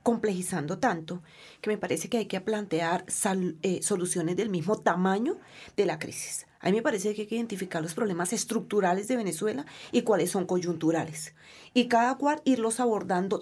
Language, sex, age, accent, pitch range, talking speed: Spanish, female, 30-49, Colombian, 180-220 Hz, 175 wpm